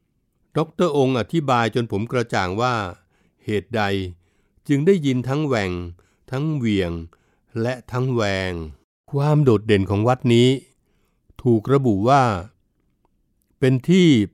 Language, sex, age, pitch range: Thai, male, 60-79, 105-130 Hz